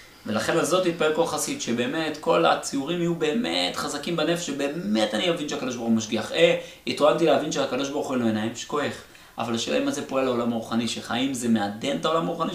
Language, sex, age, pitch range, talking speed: Hebrew, male, 30-49, 120-170 Hz, 200 wpm